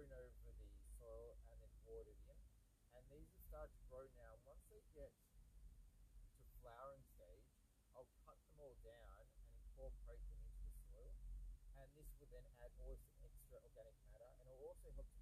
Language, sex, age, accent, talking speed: English, male, 30-49, Australian, 190 wpm